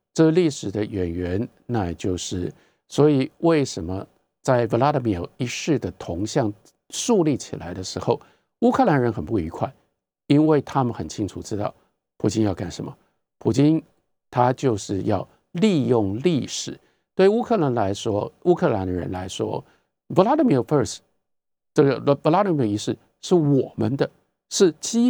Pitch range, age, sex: 105-170 Hz, 50-69, male